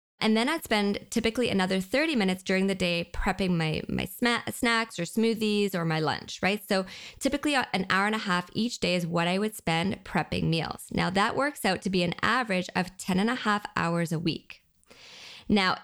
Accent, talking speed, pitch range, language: American, 205 wpm, 180-245 Hz, English